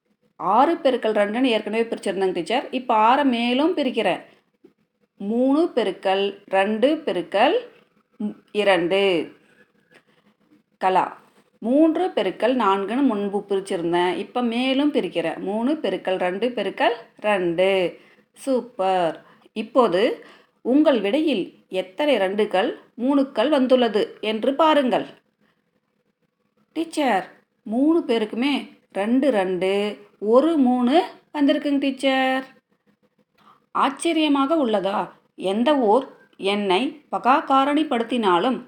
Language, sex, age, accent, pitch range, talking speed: Tamil, female, 30-49, native, 195-270 Hz, 85 wpm